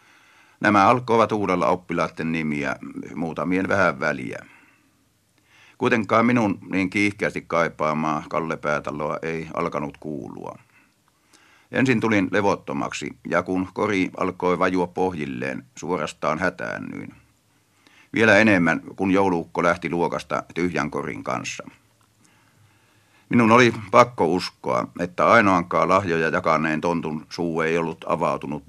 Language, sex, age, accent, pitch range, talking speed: Finnish, male, 50-69, native, 80-105 Hz, 105 wpm